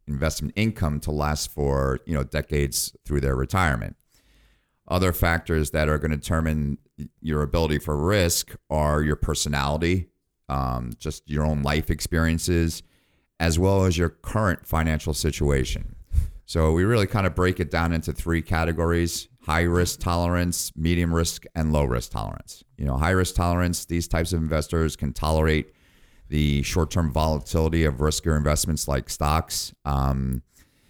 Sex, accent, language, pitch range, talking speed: male, American, English, 75-85 Hz, 150 wpm